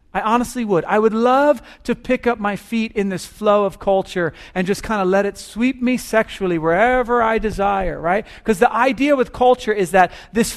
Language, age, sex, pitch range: English, 40-59, male, 170-230 Hz